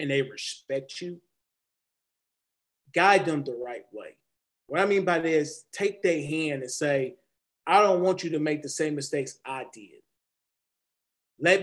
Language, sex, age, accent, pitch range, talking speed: English, male, 30-49, American, 150-190 Hz, 160 wpm